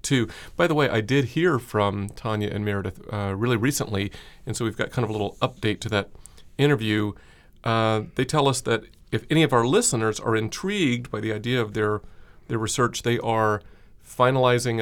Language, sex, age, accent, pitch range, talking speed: English, male, 40-59, American, 100-120 Hz, 195 wpm